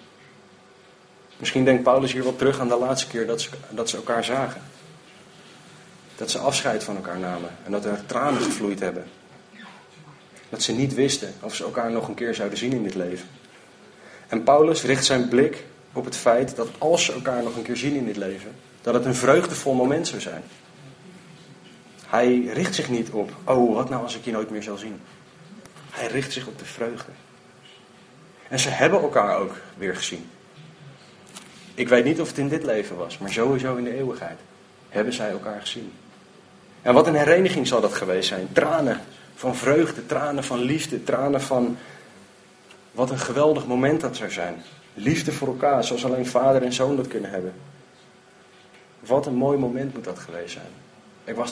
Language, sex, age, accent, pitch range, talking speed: Dutch, male, 40-59, Dutch, 115-135 Hz, 185 wpm